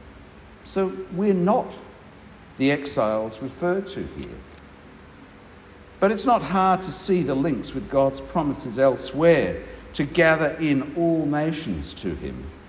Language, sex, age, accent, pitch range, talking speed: English, male, 50-69, Australian, 125-165 Hz, 130 wpm